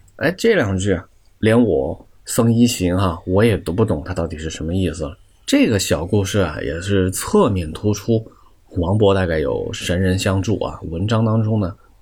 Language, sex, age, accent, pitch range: Chinese, male, 20-39, native, 90-110 Hz